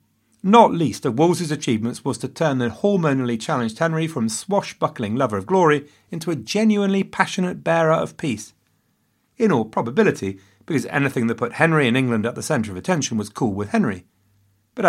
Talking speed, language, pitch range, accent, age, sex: 175 wpm, English, 110-160 Hz, British, 40-59, male